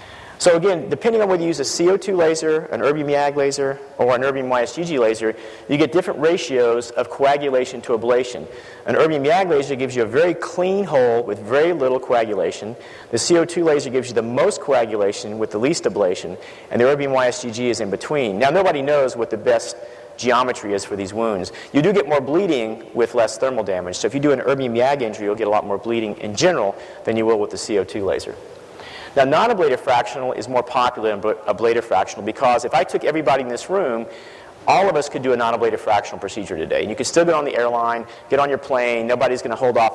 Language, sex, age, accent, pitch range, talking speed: English, male, 40-59, American, 115-155 Hz, 220 wpm